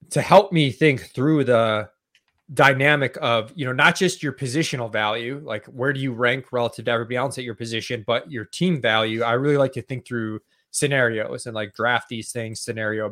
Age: 20-39